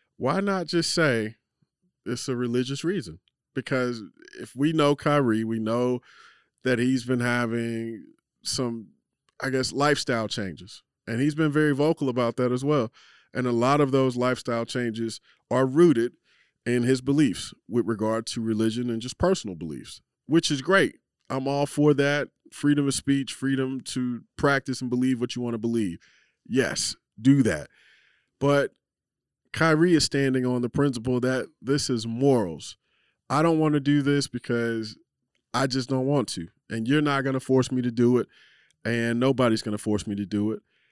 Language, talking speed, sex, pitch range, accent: English, 175 wpm, male, 120-145 Hz, American